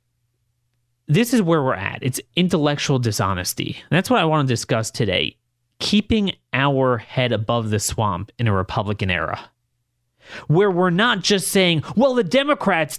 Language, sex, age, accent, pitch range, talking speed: English, male, 30-49, American, 115-145 Hz, 155 wpm